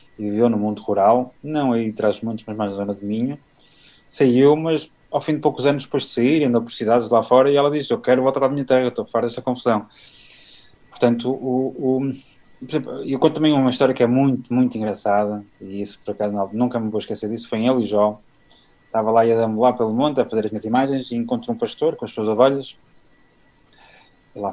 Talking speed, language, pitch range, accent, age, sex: 230 wpm, Portuguese, 105-130 Hz, Portuguese, 20-39, male